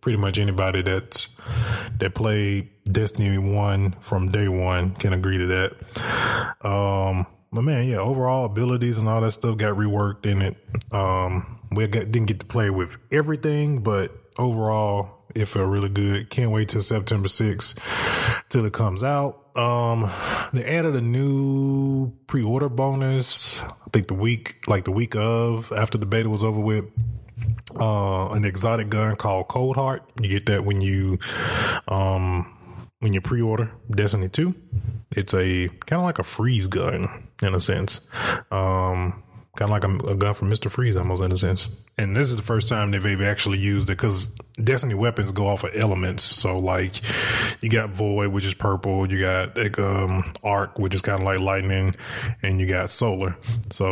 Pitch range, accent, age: 95-115 Hz, American, 20-39